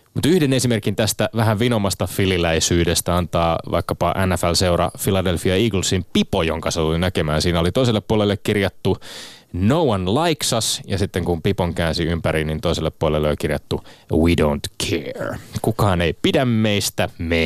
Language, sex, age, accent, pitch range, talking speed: Finnish, male, 20-39, native, 90-120 Hz, 155 wpm